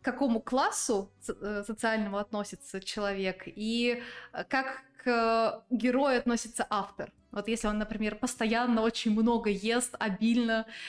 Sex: female